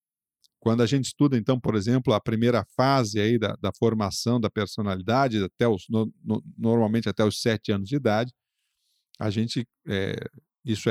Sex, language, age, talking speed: male, Portuguese, 50-69, 170 wpm